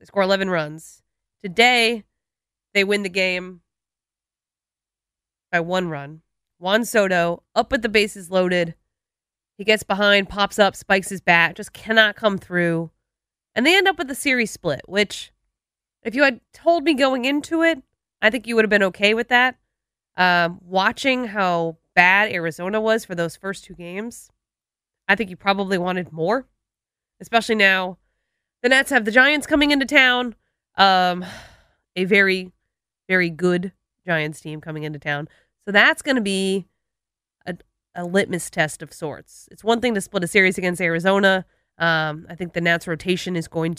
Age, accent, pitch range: 20-39, American, 170-225 Hz